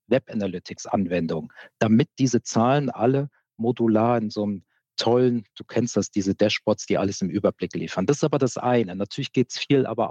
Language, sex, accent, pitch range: German, male, German, 105-125 Hz